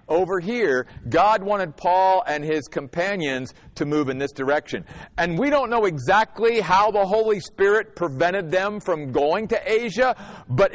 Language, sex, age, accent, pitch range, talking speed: English, male, 50-69, American, 135-205 Hz, 160 wpm